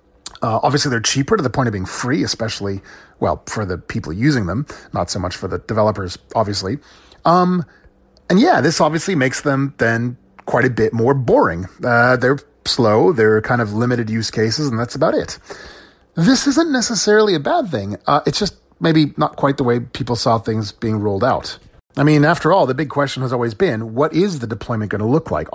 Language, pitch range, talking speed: English, 105-125 Hz, 205 wpm